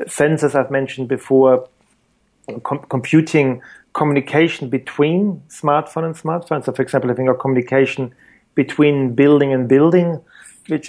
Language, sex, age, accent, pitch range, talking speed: English, male, 40-59, German, 135-155 Hz, 120 wpm